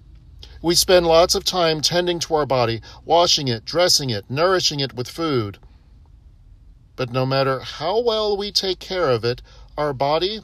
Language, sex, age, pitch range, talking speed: English, male, 40-59, 110-165 Hz, 165 wpm